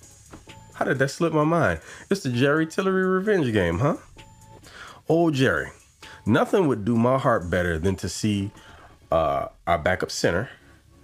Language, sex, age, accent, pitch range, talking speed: English, male, 30-49, American, 85-130 Hz, 150 wpm